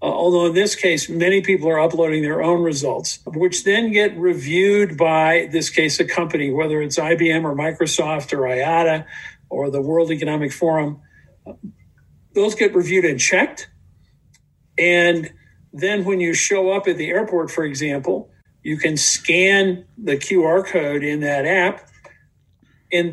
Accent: American